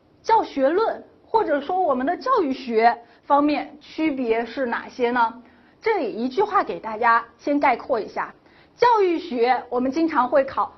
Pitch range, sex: 235-335 Hz, female